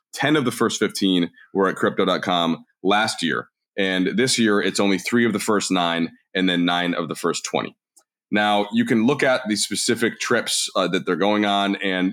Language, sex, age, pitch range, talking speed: English, male, 30-49, 95-135 Hz, 205 wpm